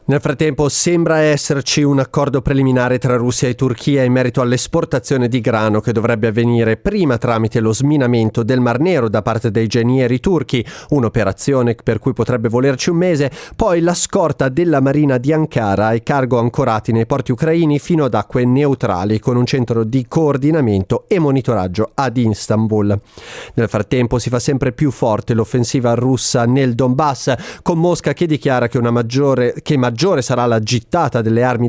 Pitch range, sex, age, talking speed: 120-150 Hz, male, 30-49, 170 wpm